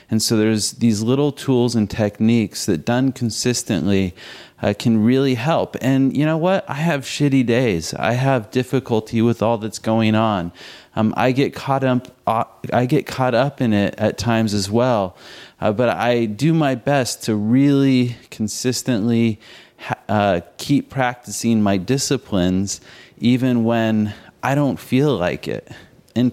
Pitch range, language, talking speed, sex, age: 110-130 Hz, English, 160 wpm, male, 30-49